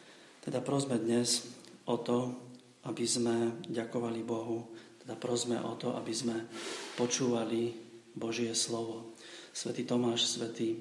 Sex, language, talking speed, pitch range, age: male, Slovak, 115 wpm, 115-120 Hz, 40-59